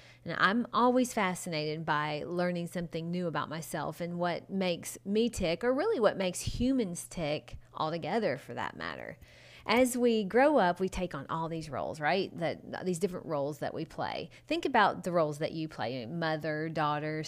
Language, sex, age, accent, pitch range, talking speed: English, female, 30-49, American, 170-235 Hz, 180 wpm